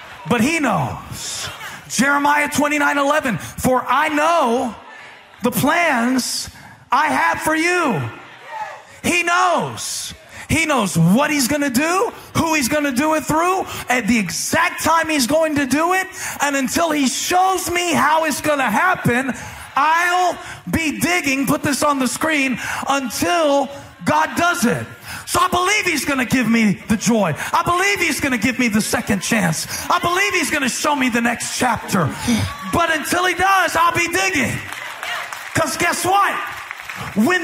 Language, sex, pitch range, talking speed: English, male, 270-350 Hz, 165 wpm